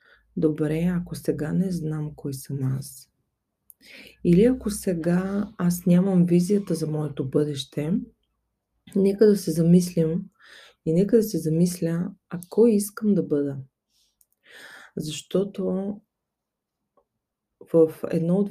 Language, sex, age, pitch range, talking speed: Bulgarian, female, 20-39, 155-185 Hz, 115 wpm